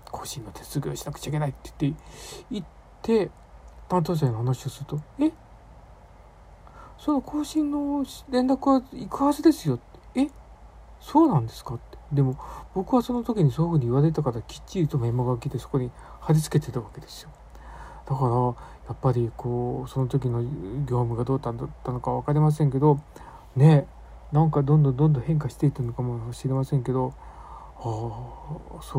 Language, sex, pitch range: Japanese, male, 120-150 Hz